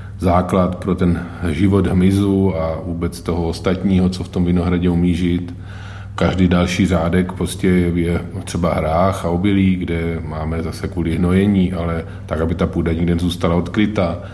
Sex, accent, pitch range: male, native, 85-100 Hz